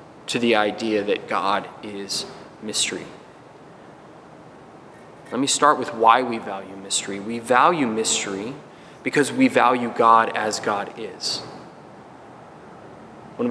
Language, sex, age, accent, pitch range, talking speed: English, male, 20-39, American, 110-125 Hz, 115 wpm